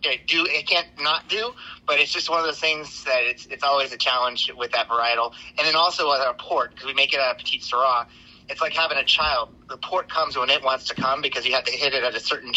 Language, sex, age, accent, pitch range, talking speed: English, male, 30-49, American, 130-165 Hz, 270 wpm